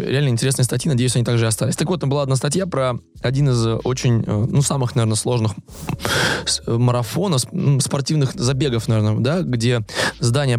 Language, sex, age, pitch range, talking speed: Russian, male, 20-39, 115-145 Hz, 165 wpm